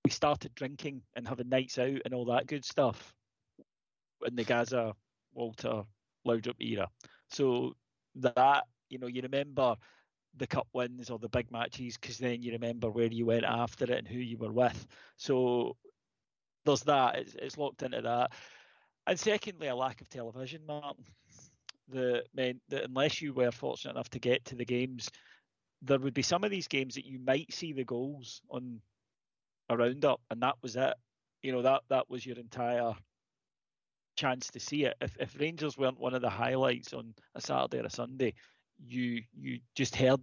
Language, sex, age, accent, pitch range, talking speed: English, male, 30-49, British, 120-135 Hz, 180 wpm